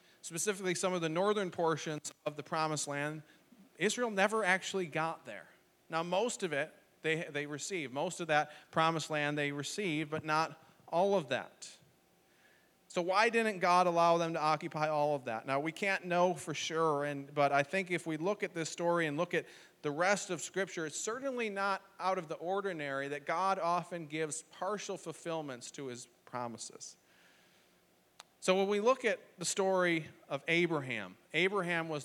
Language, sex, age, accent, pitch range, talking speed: English, male, 40-59, American, 150-185 Hz, 180 wpm